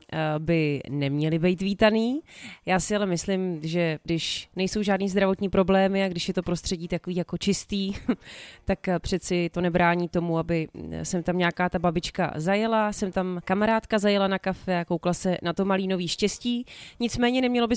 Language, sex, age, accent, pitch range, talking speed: Czech, female, 30-49, native, 180-210 Hz, 170 wpm